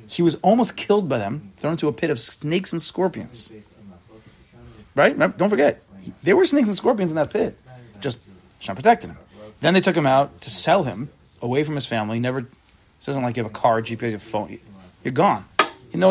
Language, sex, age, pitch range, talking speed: English, male, 30-49, 105-145 Hz, 215 wpm